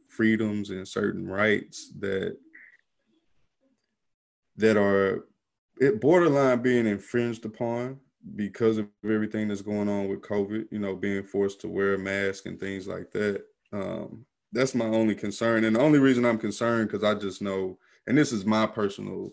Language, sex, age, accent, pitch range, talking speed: English, male, 20-39, American, 100-120 Hz, 160 wpm